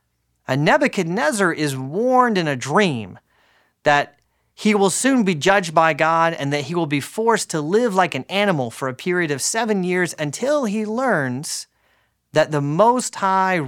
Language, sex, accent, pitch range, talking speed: English, male, American, 130-195 Hz, 170 wpm